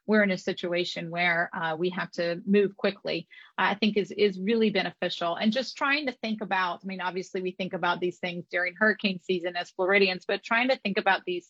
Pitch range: 180-210 Hz